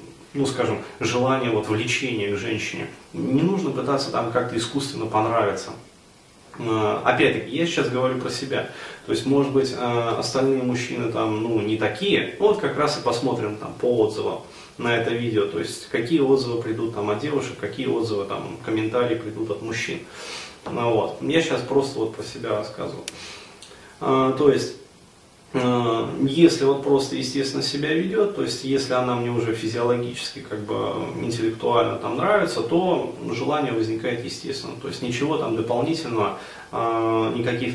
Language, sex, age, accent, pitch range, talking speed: Russian, male, 20-39, native, 110-135 Hz, 150 wpm